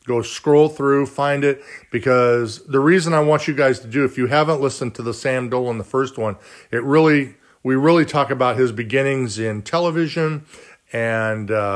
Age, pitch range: 40-59, 115-145 Hz